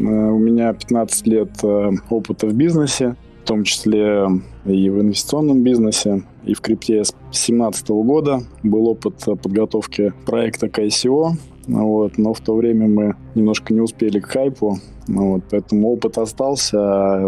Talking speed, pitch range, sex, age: 140 wpm, 105-115 Hz, male, 20-39